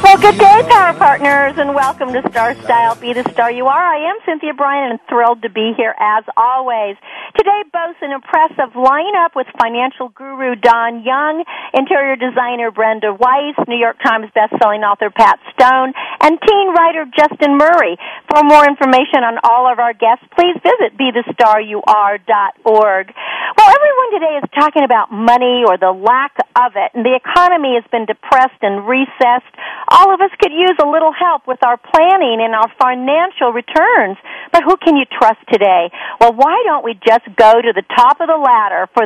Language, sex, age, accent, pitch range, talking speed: English, female, 50-69, American, 230-310 Hz, 180 wpm